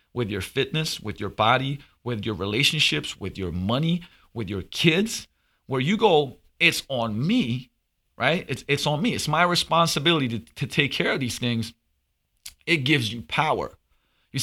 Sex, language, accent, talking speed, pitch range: male, English, American, 170 wpm, 120-160 Hz